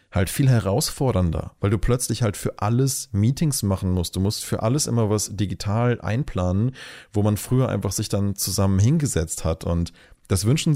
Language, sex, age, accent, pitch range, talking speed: German, male, 30-49, German, 95-110 Hz, 180 wpm